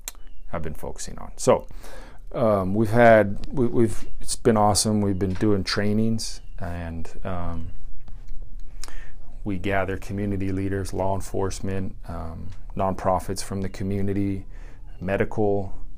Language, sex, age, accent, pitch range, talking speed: English, male, 30-49, American, 90-110 Hz, 115 wpm